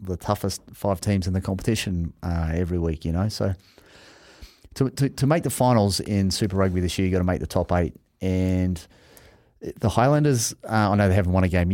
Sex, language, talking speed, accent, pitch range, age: male, English, 215 wpm, Australian, 90-115 Hz, 30-49